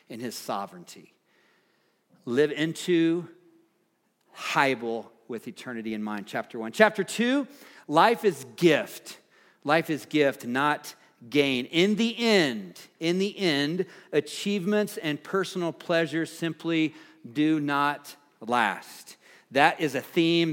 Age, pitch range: 50-69, 135-175 Hz